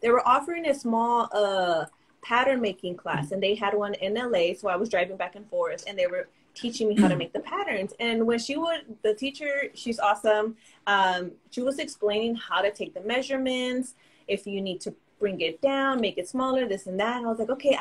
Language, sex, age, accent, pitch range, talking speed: English, female, 20-39, American, 210-280 Hz, 225 wpm